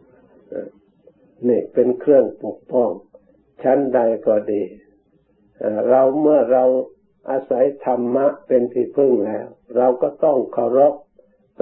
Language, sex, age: Thai, male, 60-79